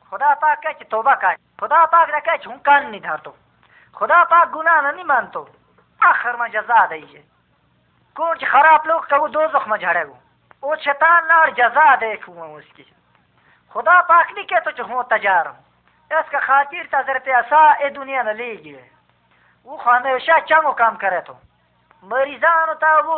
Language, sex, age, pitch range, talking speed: Hindi, female, 20-39, 250-330 Hz, 40 wpm